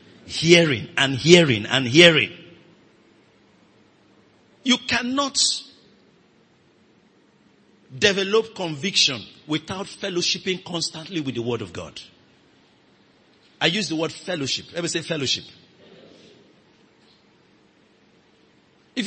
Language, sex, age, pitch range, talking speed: English, male, 50-69, 115-180 Hz, 85 wpm